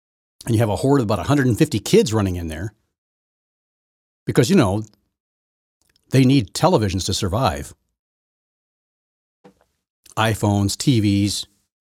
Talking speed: 110 wpm